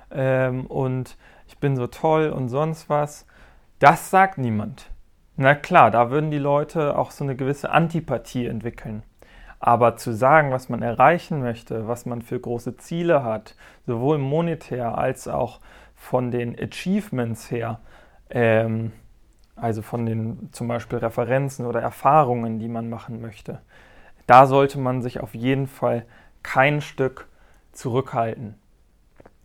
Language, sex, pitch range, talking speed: German, male, 120-150 Hz, 135 wpm